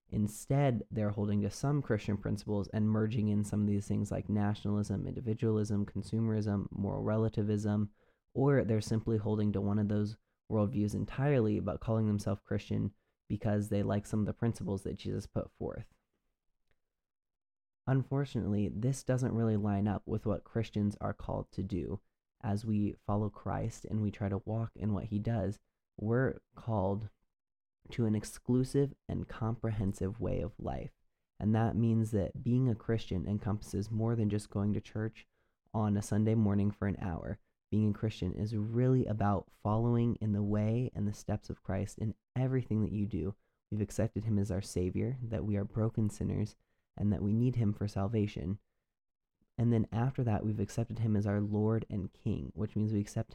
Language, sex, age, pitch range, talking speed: English, male, 20-39, 100-110 Hz, 175 wpm